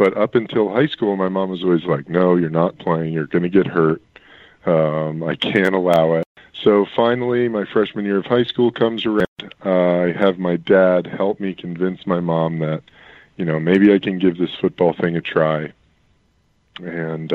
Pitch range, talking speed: 80-100 Hz, 195 wpm